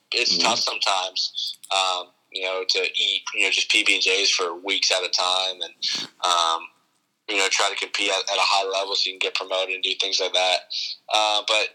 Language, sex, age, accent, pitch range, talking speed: English, male, 10-29, American, 95-105 Hz, 210 wpm